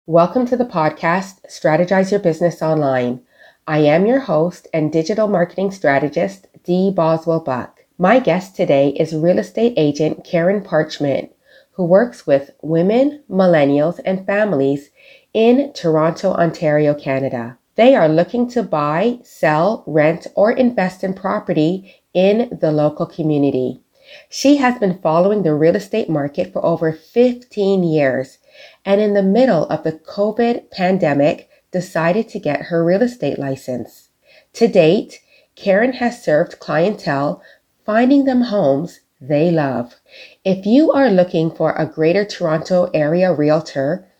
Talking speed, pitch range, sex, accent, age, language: 135 wpm, 155-210 Hz, female, American, 30-49, English